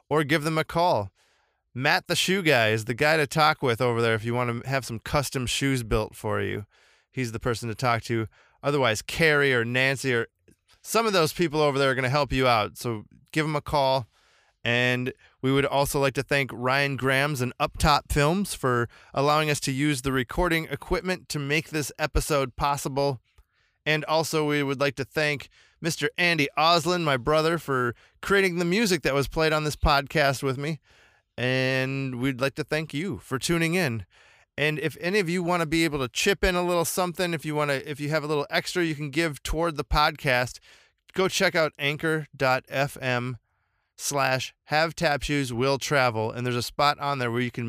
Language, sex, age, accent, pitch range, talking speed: English, male, 20-39, American, 125-155 Hz, 205 wpm